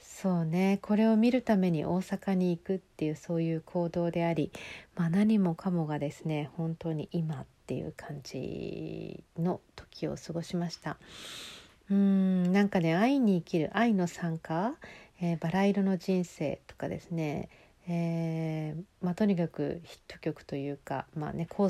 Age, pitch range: 50-69, 160-190 Hz